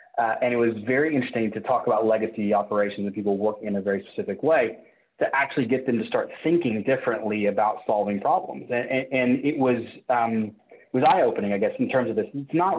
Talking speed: 220 wpm